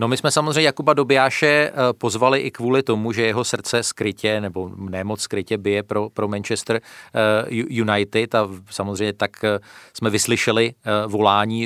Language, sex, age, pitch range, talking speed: Czech, male, 40-59, 110-130 Hz, 145 wpm